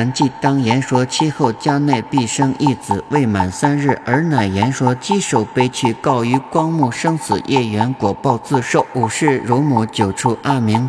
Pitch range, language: 115-150 Hz, Chinese